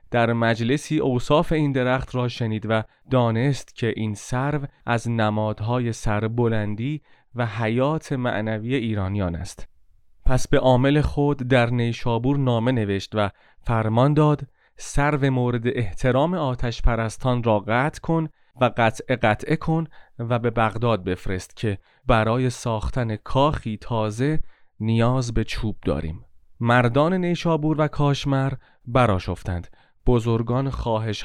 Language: Persian